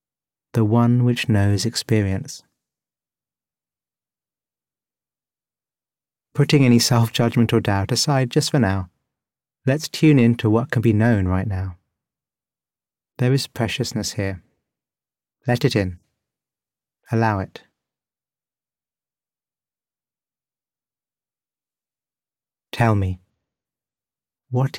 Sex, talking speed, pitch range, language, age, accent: male, 85 wpm, 105-130 Hz, English, 30-49, British